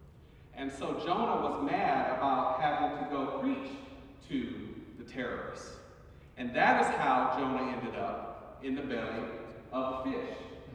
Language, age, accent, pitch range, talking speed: English, 40-59, American, 115-175 Hz, 145 wpm